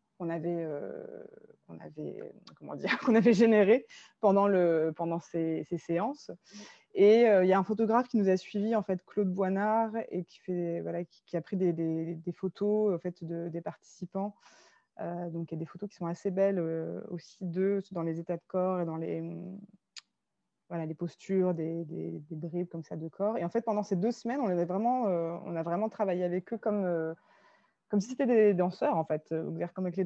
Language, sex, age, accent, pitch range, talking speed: French, female, 20-39, French, 170-215 Hz, 220 wpm